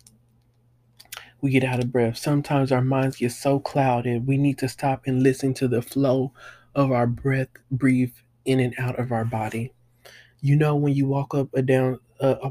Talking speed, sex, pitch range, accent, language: 185 wpm, male, 120-135 Hz, American, English